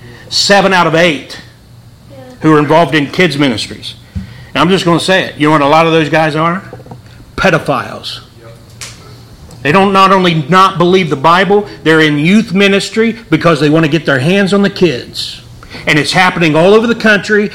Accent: American